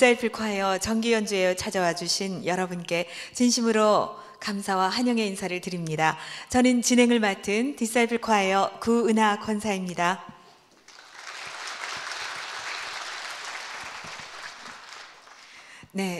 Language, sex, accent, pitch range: Korean, female, native, 175-235 Hz